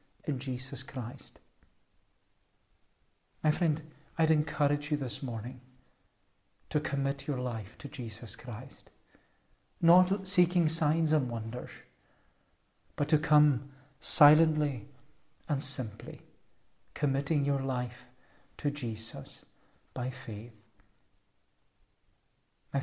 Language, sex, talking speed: English, male, 95 wpm